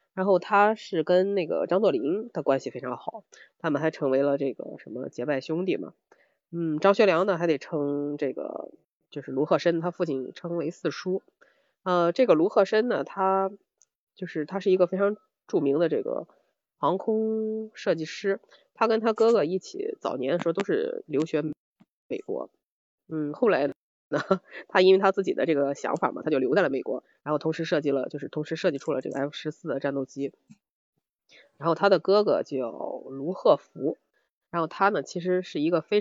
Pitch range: 150-200 Hz